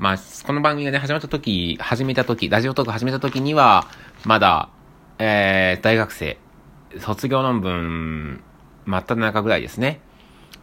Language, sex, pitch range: Japanese, male, 85-120 Hz